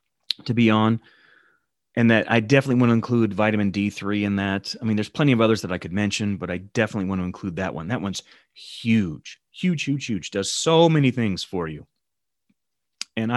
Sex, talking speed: male, 200 wpm